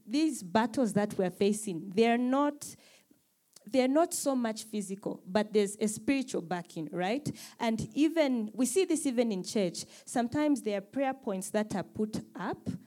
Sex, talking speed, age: female, 165 wpm, 20-39